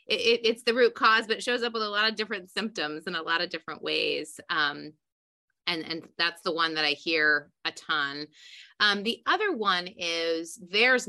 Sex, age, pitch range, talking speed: female, 30-49, 165-205 Hz, 195 wpm